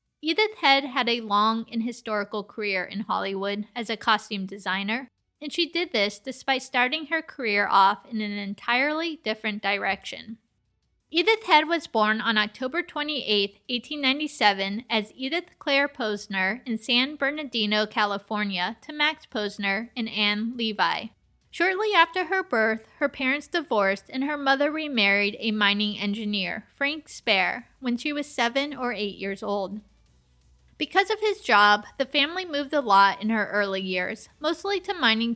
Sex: female